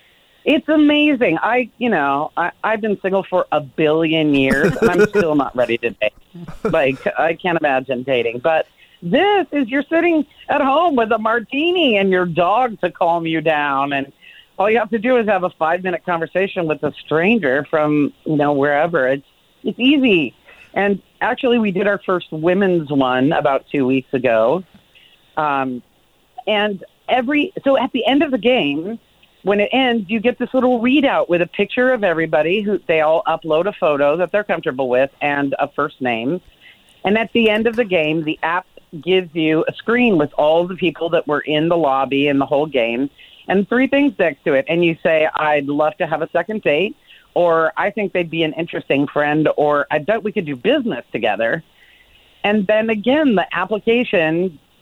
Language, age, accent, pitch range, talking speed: English, 40-59, American, 150-225 Hz, 190 wpm